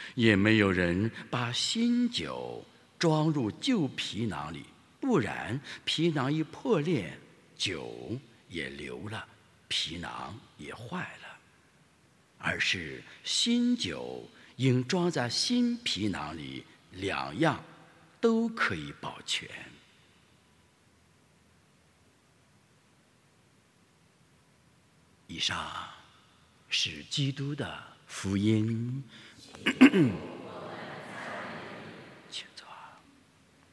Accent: Chinese